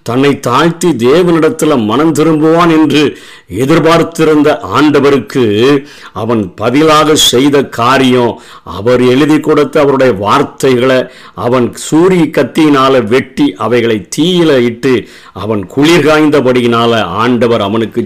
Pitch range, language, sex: 120-155 Hz, Tamil, male